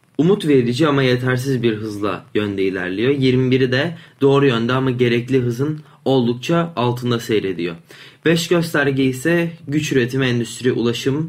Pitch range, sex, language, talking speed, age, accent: 120-150 Hz, male, Turkish, 135 wpm, 20-39, native